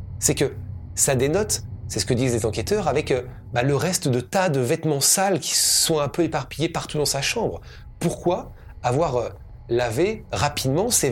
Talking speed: 190 wpm